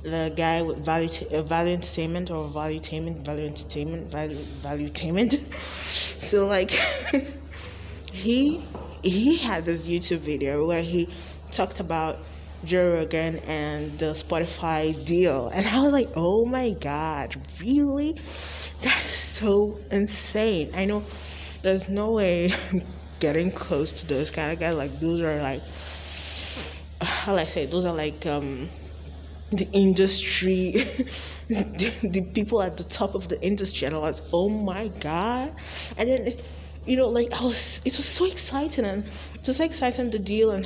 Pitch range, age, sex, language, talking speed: 135-205 Hz, 20-39, female, English, 155 wpm